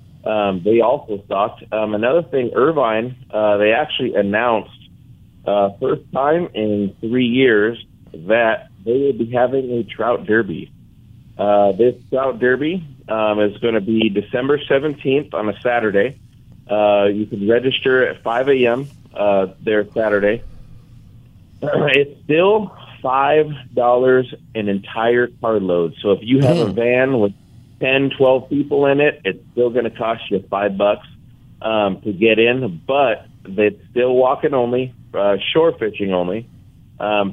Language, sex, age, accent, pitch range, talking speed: English, male, 30-49, American, 105-130 Hz, 145 wpm